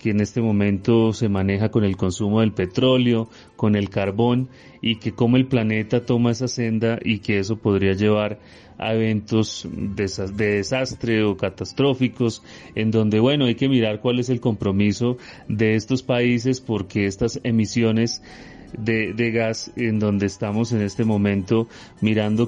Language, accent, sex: Spanish, Colombian, male